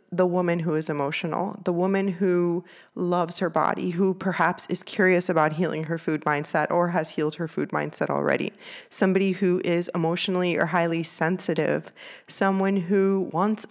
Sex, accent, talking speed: female, American, 160 wpm